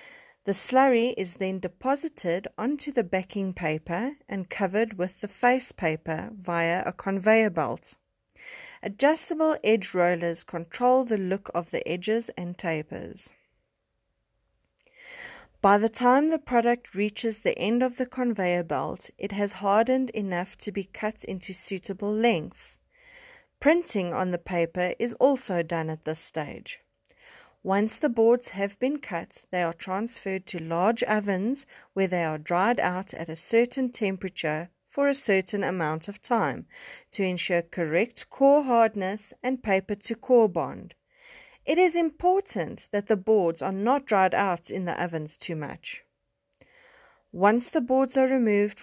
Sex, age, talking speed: female, 30-49, 145 wpm